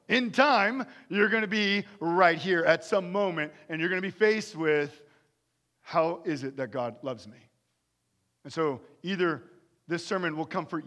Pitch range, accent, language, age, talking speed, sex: 135-185 Hz, American, English, 40-59, 175 wpm, male